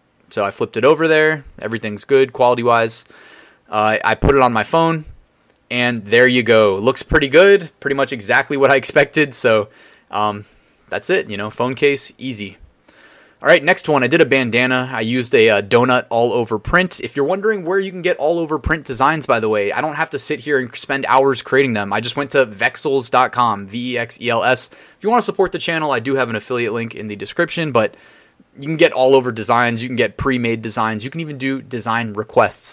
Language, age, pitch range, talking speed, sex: English, 20-39, 115-155 Hz, 230 wpm, male